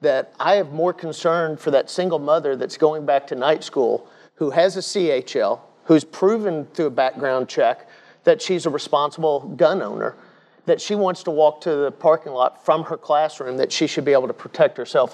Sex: male